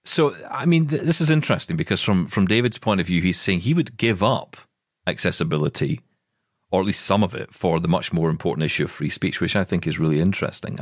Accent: British